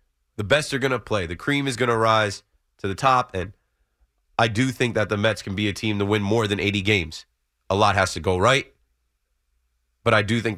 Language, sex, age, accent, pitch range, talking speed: English, male, 30-49, American, 100-140 Hz, 240 wpm